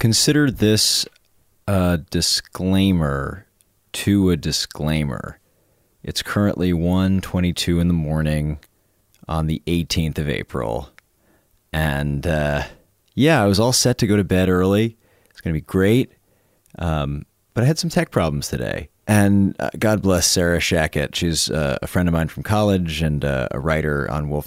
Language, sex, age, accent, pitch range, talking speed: English, male, 30-49, American, 75-100 Hz, 155 wpm